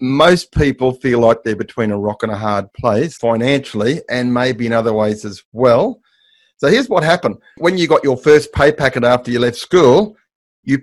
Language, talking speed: English, 200 wpm